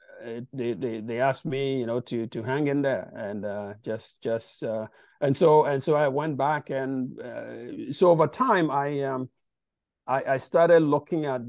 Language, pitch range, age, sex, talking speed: English, 115-145 Hz, 50-69, male, 190 wpm